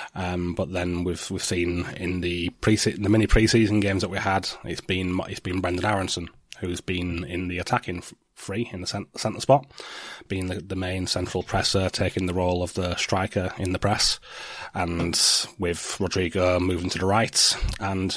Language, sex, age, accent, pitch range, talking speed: English, male, 30-49, British, 95-110 Hz, 180 wpm